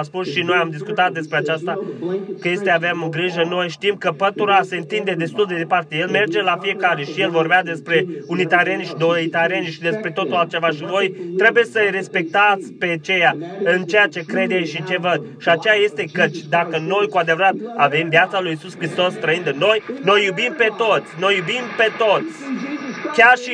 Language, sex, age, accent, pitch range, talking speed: Romanian, male, 20-39, native, 175-210 Hz, 195 wpm